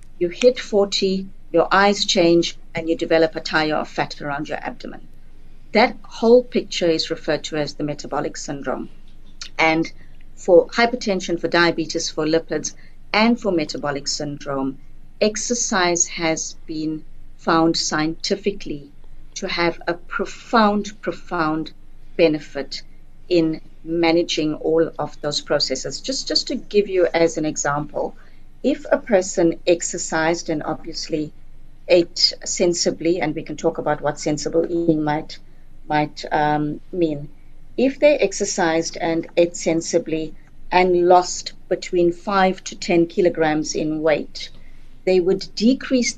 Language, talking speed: English, 130 wpm